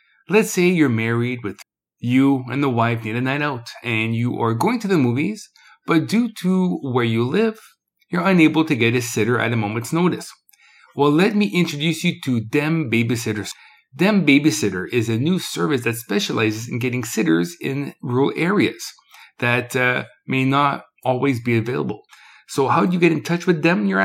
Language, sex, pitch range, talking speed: English, male, 120-175 Hz, 185 wpm